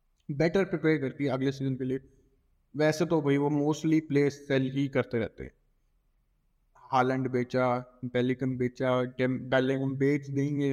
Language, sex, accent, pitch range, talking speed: Hindi, male, native, 125-150 Hz, 145 wpm